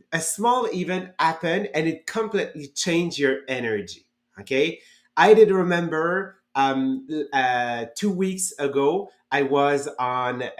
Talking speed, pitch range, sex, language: 125 wpm, 135-185 Hz, male, English